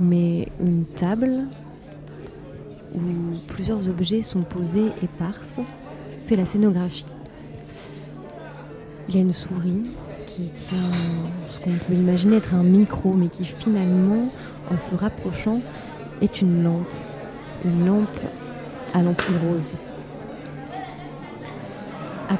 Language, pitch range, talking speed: French, 165-190 Hz, 110 wpm